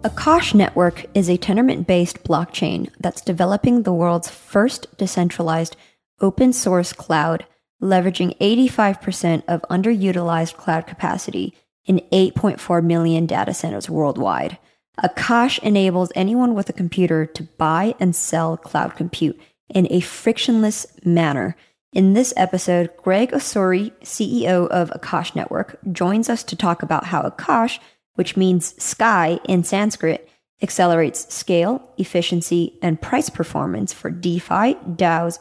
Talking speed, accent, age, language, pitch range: 120 wpm, American, 20-39, English, 170-215 Hz